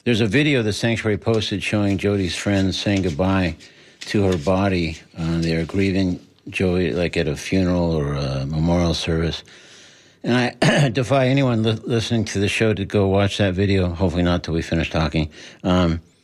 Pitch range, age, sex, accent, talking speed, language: 85-105 Hz, 60-79, male, American, 180 wpm, English